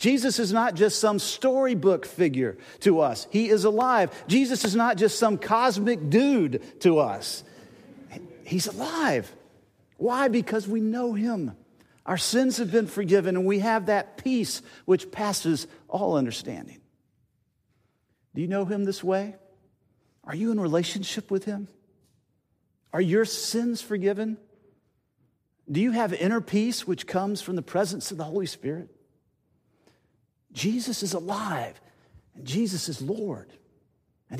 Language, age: English, 50-69